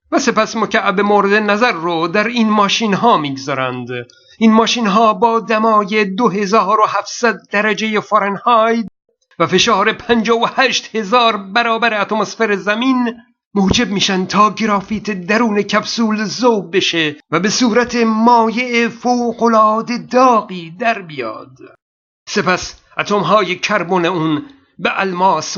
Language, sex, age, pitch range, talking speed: Persian, male, 50-69, 180-225 Hz, 115 wpm